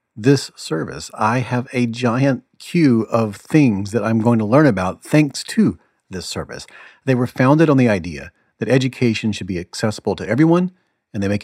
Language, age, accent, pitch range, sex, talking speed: English, 40-59, American, 105-145 Hz, male, 185 wpm